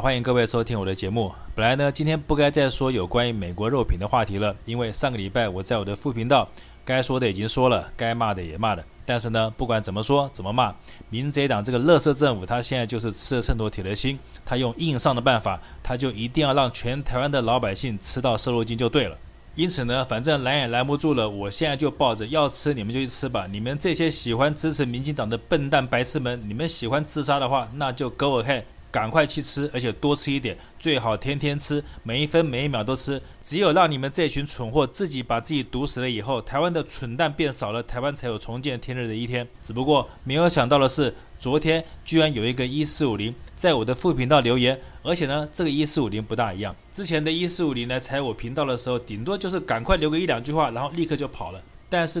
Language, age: Chinese, 20-39